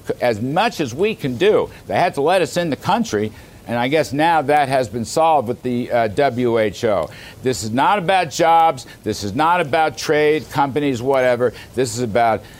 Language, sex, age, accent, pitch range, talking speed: English, male, 60-79, American, 115-160 Hz, 195 wpm